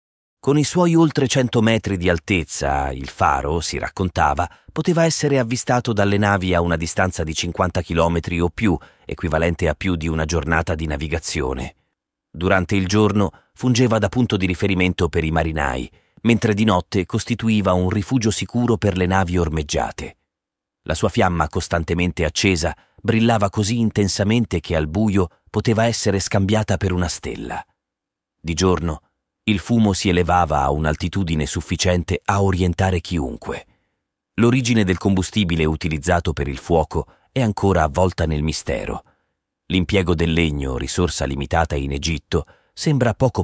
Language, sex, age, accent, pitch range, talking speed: Italian, male, 30-49, native, 80-105 Hz, 145 wpm